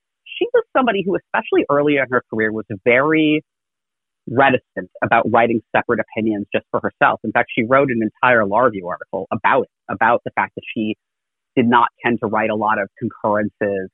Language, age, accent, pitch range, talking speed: English, 30-49, American, 115-175 Hz, 190 wpm